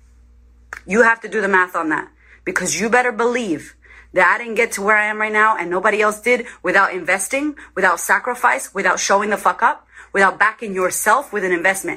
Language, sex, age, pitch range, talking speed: English, female, 30-49, 185-240 Hz, 205 wpm